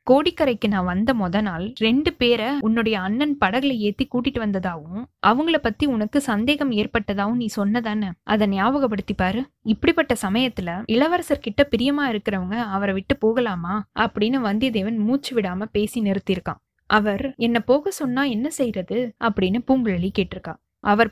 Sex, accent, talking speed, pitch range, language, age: female, native, 130 wpm, 205-260 Hz, Tamil, 20-39